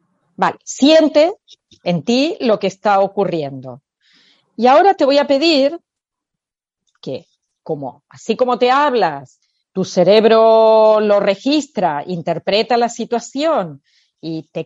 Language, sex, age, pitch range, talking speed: Spanish, female, 40-59, 195-280 Hz, 120 wpm